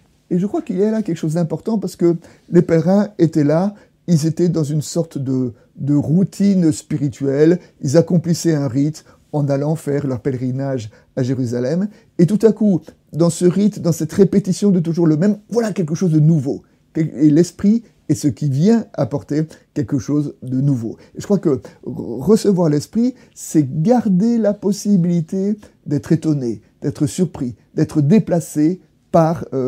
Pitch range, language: 140-195 Hz, French